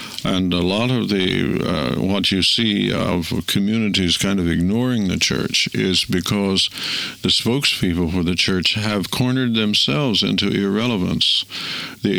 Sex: male